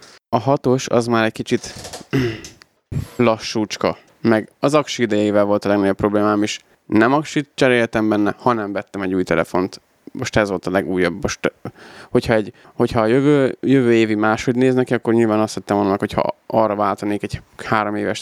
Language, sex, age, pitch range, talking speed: Hungarian, male, 20-39, 105-130 Hz, 170 wpm